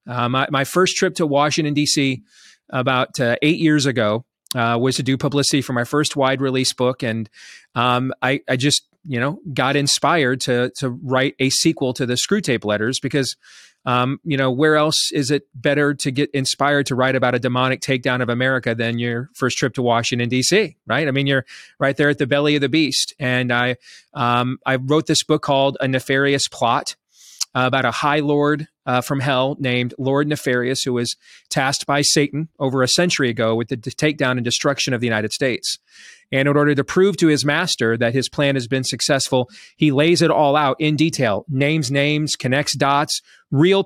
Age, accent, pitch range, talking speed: 30-49, American, 130-150 Hz, 200 wpm